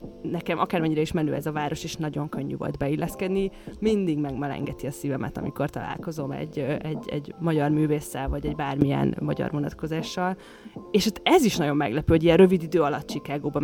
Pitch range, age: 140-170 Hz, 20-39